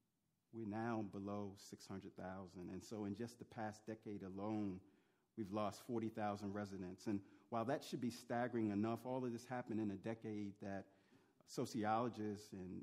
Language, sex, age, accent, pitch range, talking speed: English, male, 40-59, American, 100-115 Hz, 155 wpm